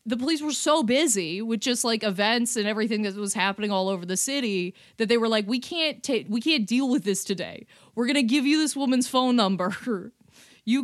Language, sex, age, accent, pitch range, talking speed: English, female, 20-39, American, 210-285 Hz, 220 wpm